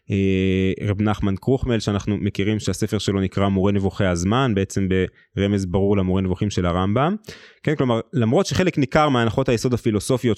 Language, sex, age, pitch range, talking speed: Hebrew, male, 20-39, 105-140 Hz, 150 wpm